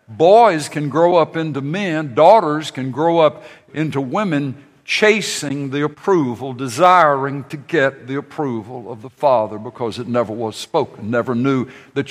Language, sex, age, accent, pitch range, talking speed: English, male, 60-79, American, 120-155 Hz, 155 wpm